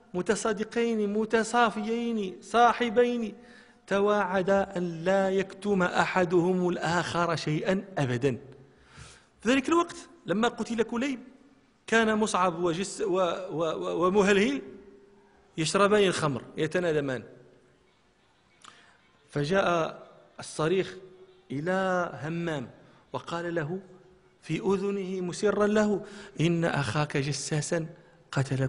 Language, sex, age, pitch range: Arabic, male, 40-59, 135-195 Hz